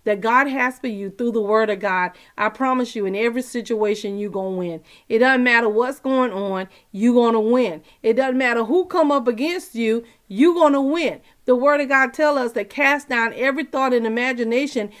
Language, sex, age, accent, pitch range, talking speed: English, female, 40-59, American, 225-275 Hz, 220 wpm